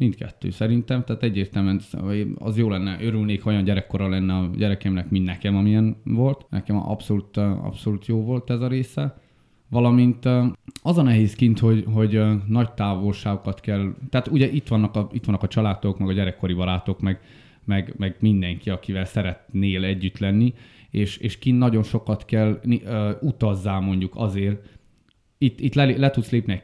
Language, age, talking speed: Hungarian, 20-39, 160 wpm